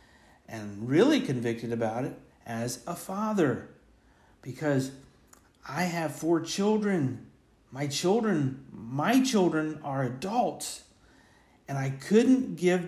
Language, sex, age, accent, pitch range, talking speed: English, male, 50-69, American, 120-185 Hz, 105 wpm